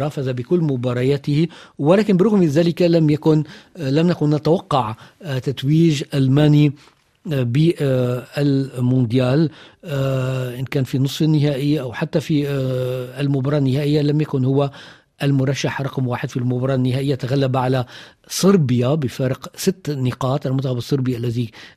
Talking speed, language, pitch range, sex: 120 wpm, Arabic, 125-145 Hz, male